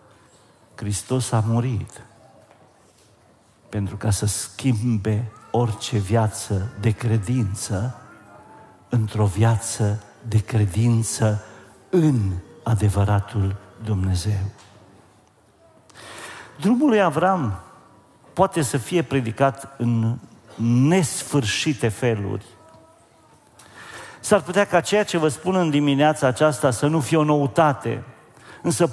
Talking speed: 90 wpm